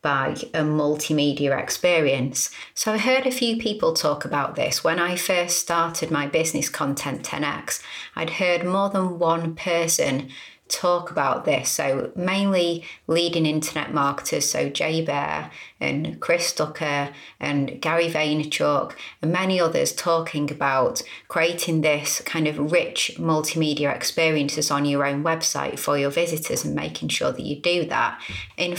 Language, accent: English, British